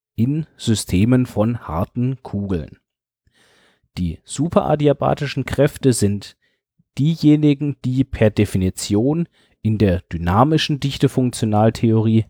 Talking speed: 85 wpm